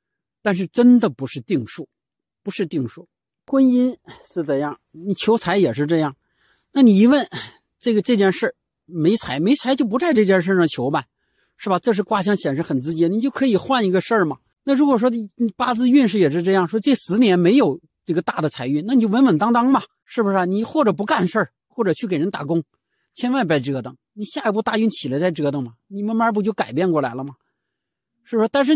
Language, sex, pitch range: Chinese, male, 155-230 Hz